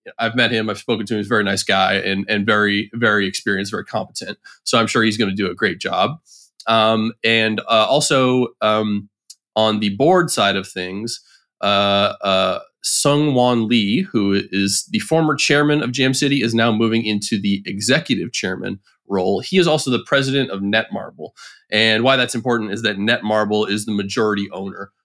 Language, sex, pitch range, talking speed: English, male, 105-130 Hz, 190 wpm